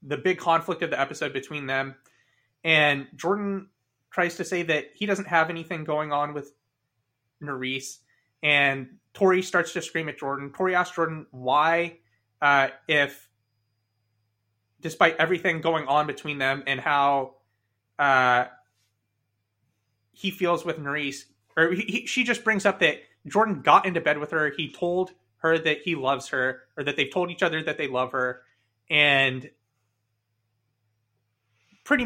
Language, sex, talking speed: English, male, 150 wpm